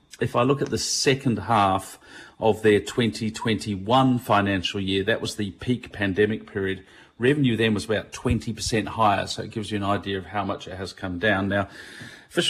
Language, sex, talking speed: English, male, 185 wpm